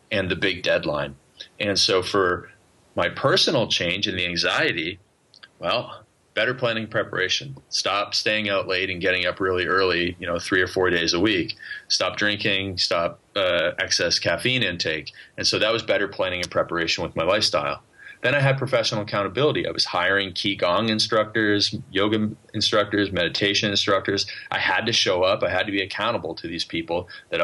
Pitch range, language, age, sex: 90-105 Hz, English, 30-49, male